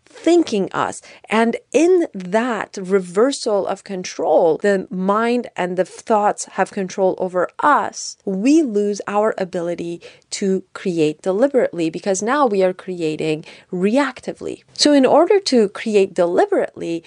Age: 30-49